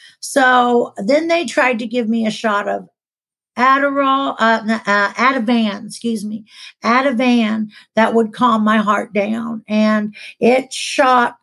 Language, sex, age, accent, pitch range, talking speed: English, female, 50-69, American, 215-260 Hz, 160 wpm